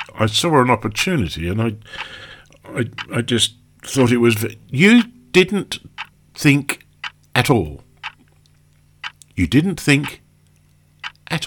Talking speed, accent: 115 wpm, British